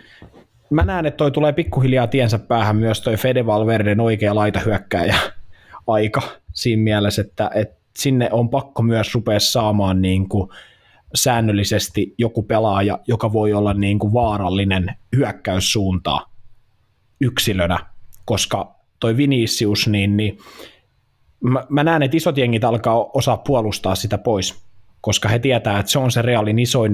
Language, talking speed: Finnish, 135 wpm